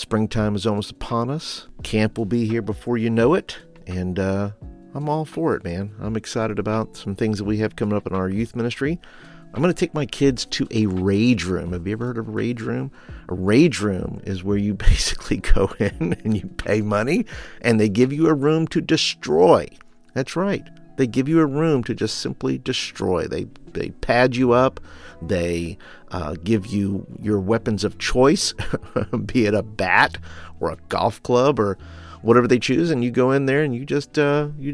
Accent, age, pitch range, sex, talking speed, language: American, 50-69, 95-130 Hz, male, 205 wpm, English